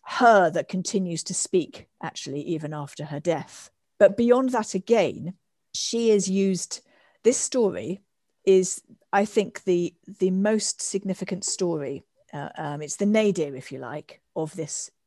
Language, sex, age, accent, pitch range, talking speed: English, female, 40-59, British, 170-235 Hz, 145 wpm